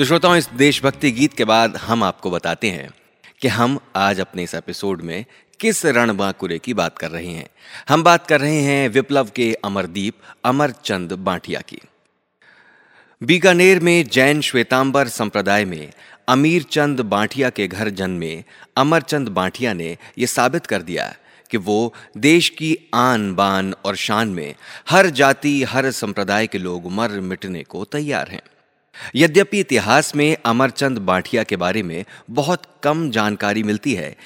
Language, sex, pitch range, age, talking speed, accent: Hindi, male, 100-145 Hz, 30-49, 150 wpm, native